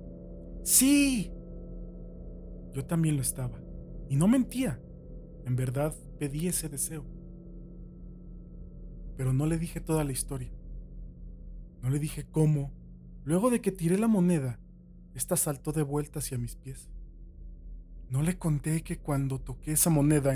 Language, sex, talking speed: Spanish, male, 135 wpm